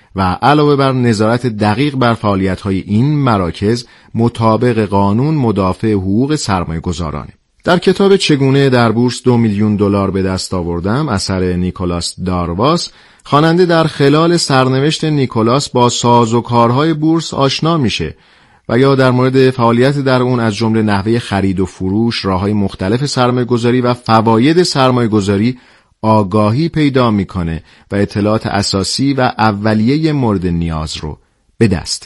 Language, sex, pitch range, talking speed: Persian, male, 100-135 Hz, 140 wpm